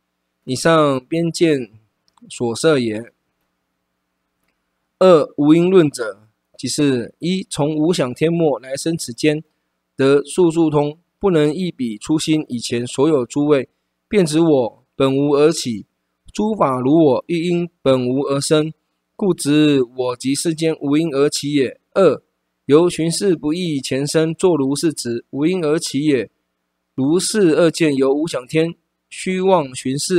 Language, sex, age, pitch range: Chinese, male, 20-39, 125-170 Hz